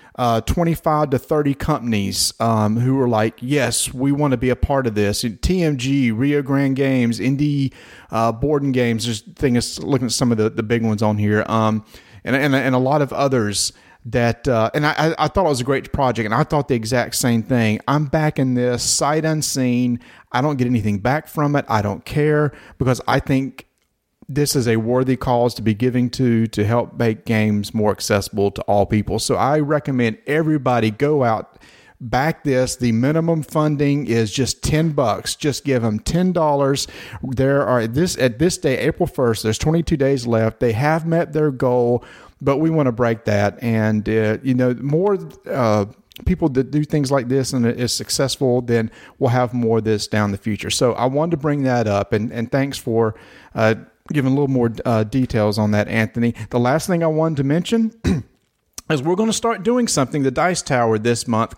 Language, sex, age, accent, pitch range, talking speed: English, male, 40-59, American, 115-145 Hz, 205 wpm